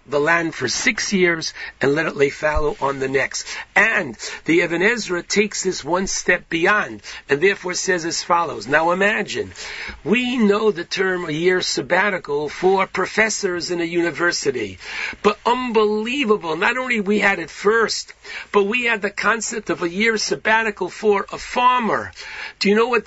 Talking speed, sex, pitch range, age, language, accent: 165 wpm, male, 175-220 Hz, 50-69, English, American